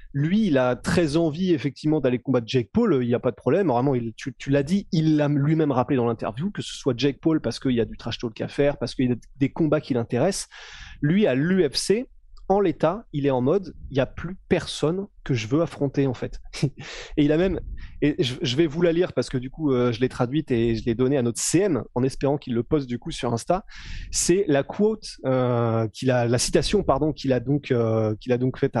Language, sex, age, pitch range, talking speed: French, male, 20-39, 125-170 Hz, 250 wpm